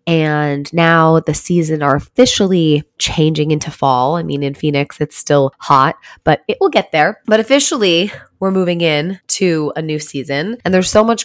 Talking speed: 180 wpm